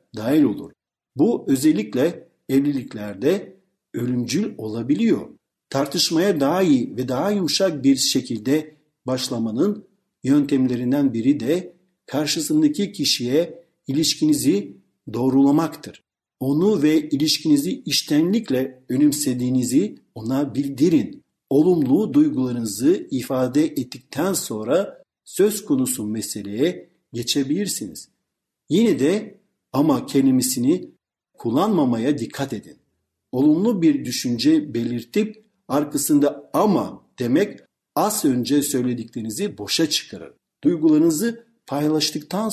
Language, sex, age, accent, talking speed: Turkish, male, 50-69, native, 85 wpm